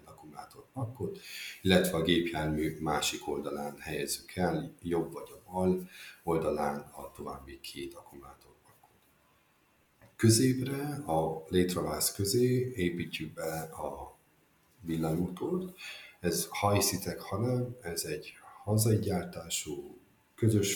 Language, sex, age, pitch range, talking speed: Hungarian, male, 50-69, 75-95 Hz, 95 wpm